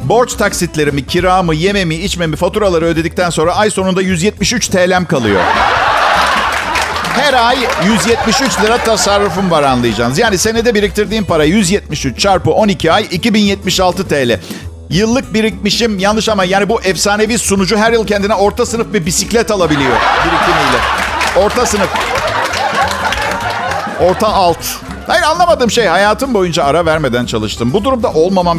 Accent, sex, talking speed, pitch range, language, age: native, male, 130 wpm, 165-225 Hz, Turkish, 50-69